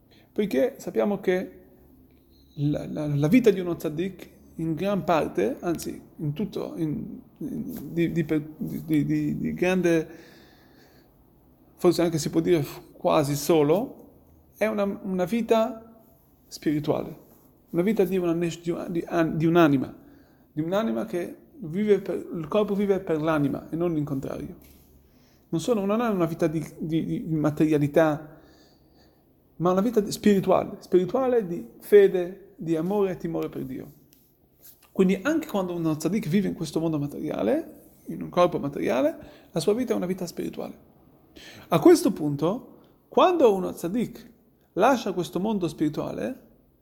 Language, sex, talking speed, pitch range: Italian, male, 145 wpm, 155-200 Hz